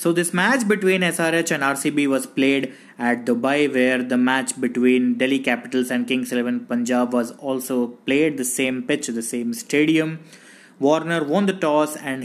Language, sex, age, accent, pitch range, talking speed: English, male, 20-39, Indian, 125-150 Hz, 170 wpm